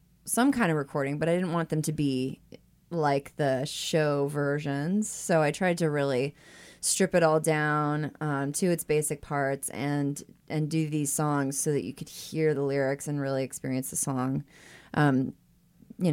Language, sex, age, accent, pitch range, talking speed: English, female, 20-39, American, 140-170 Hz, 180 wpm